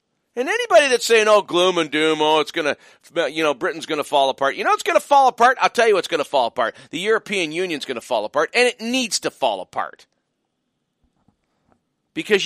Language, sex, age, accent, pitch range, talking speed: English, male, 40-59, American, 160-245 Hz, 230 wpm